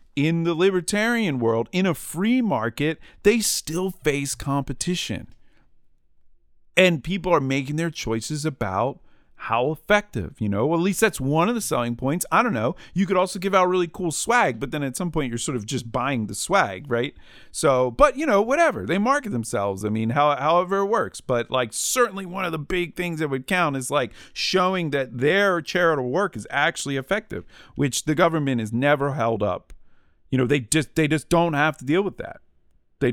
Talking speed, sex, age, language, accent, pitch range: 200 wpm, male, 40-59, English, American, 115-170 Hz